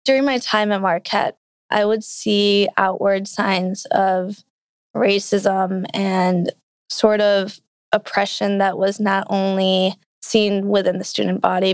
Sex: female